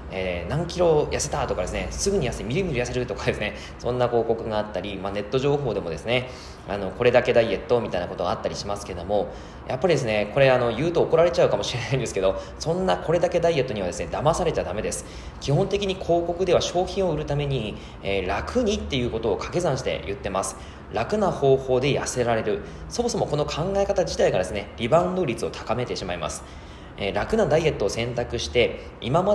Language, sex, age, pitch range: Japanese, male, 20-39, 105-165 Hz